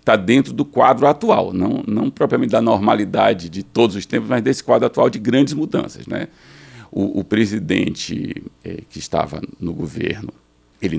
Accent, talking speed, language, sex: Brazilian, 170 wpm, Portuguese, male